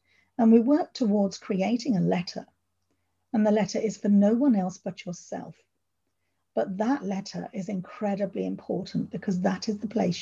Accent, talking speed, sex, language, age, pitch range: British, 165 wpm, female, English, 40-59, 175-220 Hz